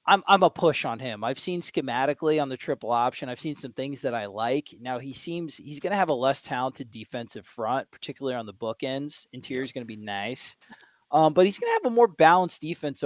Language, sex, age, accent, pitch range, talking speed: English, male, 20-39, American, 125-150 Hz, 240 wpm